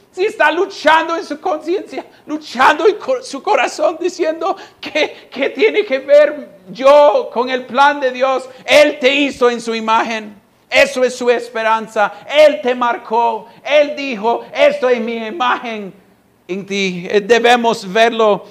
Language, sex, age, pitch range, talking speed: Spanish, male, 50-69, 155-235 Hz, 145 wpm